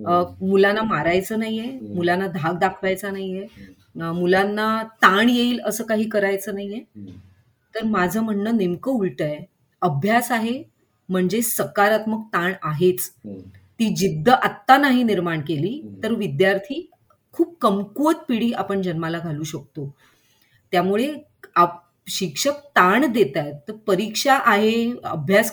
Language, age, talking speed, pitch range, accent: Marathi, 30-49, 90 wpm, 180-255 Hz, native